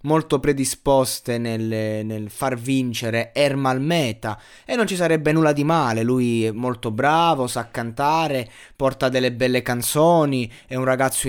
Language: Italian